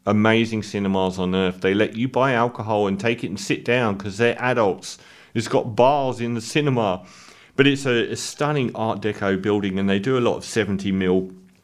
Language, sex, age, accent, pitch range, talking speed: English, male, 40-59, British, 100-130 Hz, 205 wpm